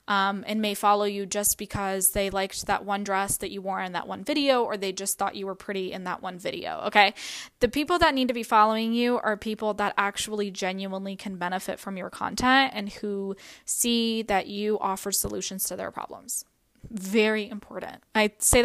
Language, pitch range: English, 200-255 Hz